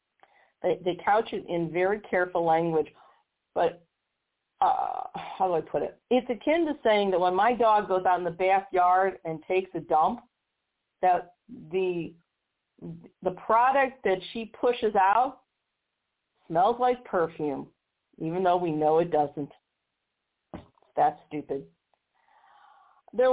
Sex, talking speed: female, 130 wpm